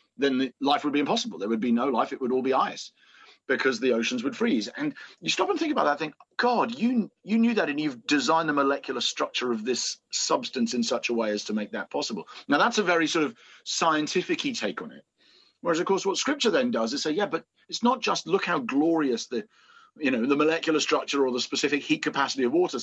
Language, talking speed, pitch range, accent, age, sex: English, 240 wpm, 115-170 Hz, British, 40-59, male